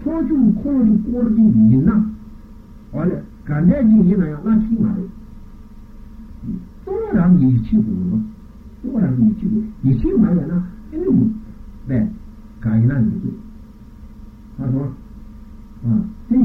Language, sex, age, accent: Italian, male, 60-79, American